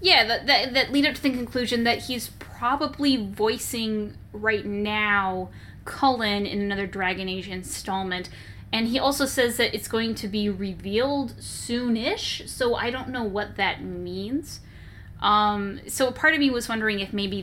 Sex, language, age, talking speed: female, English, 10-29, 170 wpm